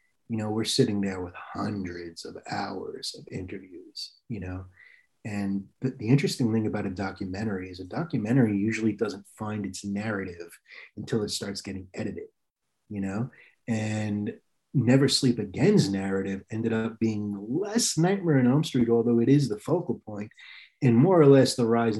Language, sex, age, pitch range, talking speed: English, male, 30-49, 100-125 Hz, 165 wpm